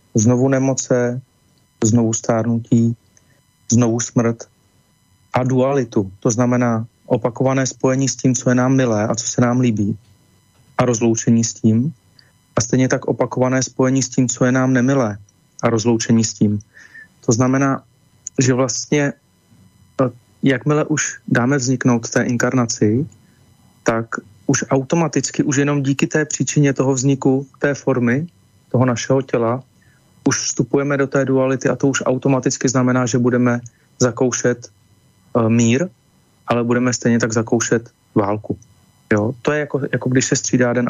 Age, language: 30-49, Slovak